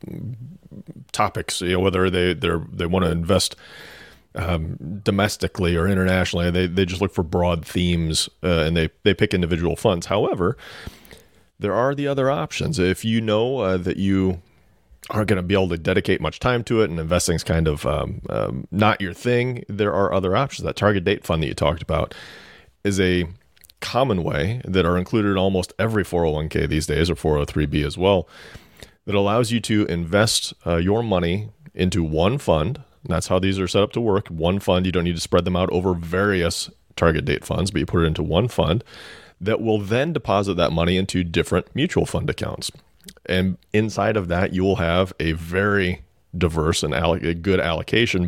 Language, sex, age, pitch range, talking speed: English, male, 40-59, 85-105 Hz, 190 wpm